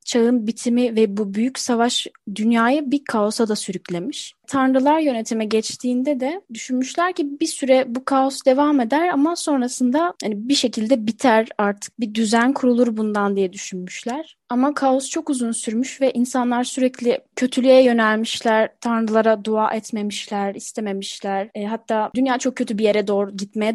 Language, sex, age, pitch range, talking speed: Turkish, female, 10-29, 210-260 Hz, 150 wpm